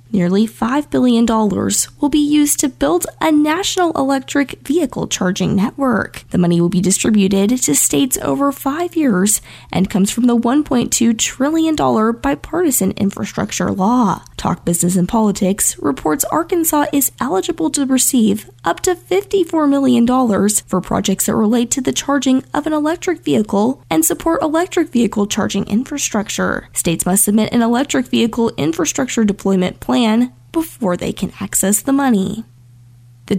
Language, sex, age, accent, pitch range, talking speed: English, female, 10-29, American, 200-295 Hz, 145 wpm